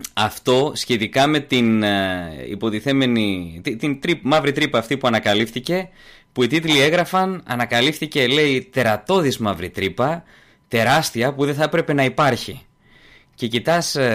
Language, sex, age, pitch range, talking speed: Greek, male, 20-39, 110-150 Hz, 125 wpm